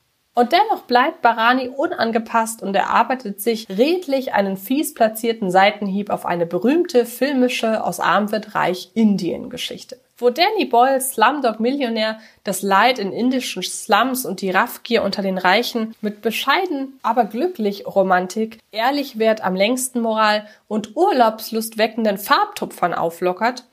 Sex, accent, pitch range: female, German, 200-250 Hz